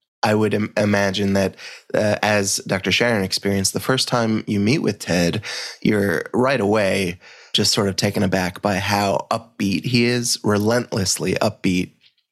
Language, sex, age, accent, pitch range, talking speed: English, male, 20-39, American, 100-115 Hz, 155 wpm